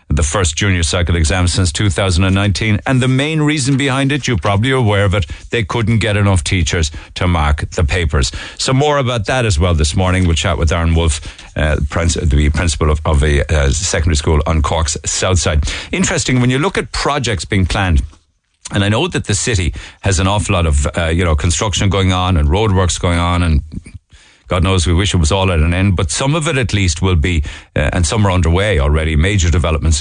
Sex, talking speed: male, 220 wpm